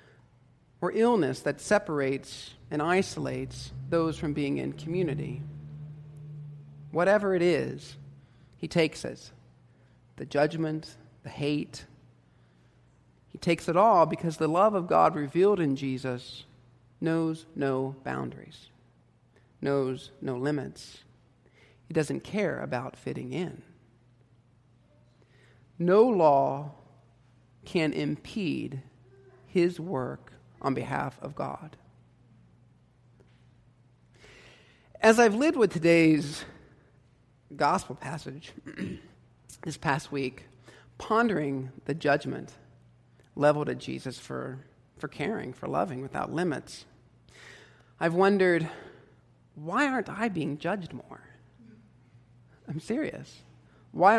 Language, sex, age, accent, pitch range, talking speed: English, male, 50-69, American, 125-165 Hz, 100 wpm